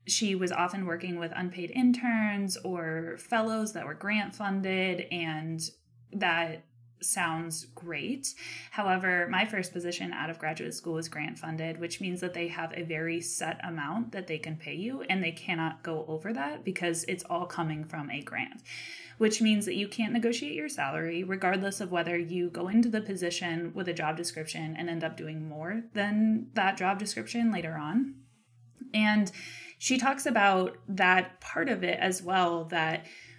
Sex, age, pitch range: female, 20-39, 160-200 Hz